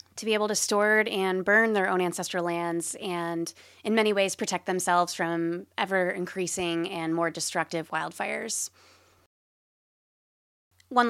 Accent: American